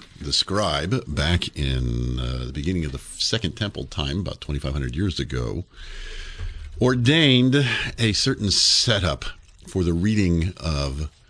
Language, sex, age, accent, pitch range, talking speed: English, male, 50-69, American, 75-115 Hz, 125 wpm